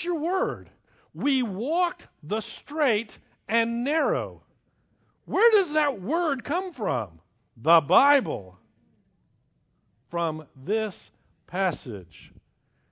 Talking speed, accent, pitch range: 90 wpm, American, 120-195 Hz